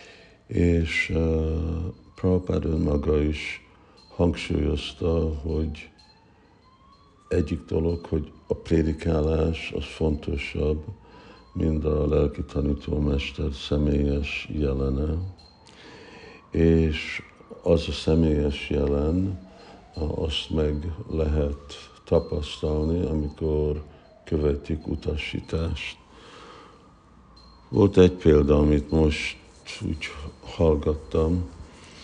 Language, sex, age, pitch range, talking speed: Hungarian, male, 60-79, 75-80 Hz, 75 wpm